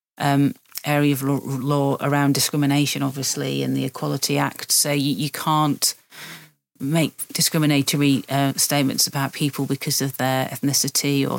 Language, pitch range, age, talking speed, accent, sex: English, 135-145 Hz, 40-59, 140 wpm, British, female